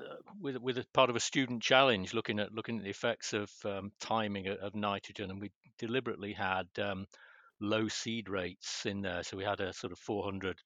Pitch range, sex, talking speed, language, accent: 95-115 Hz, male, 210 wpm, English, British